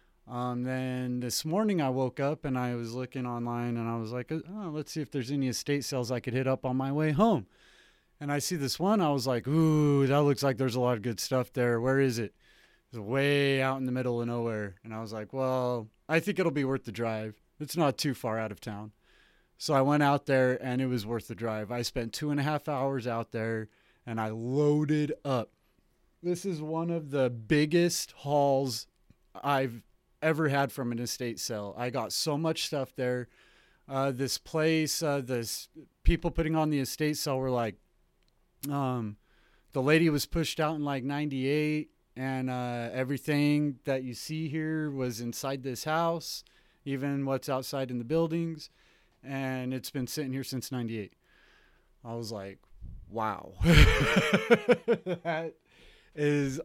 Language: English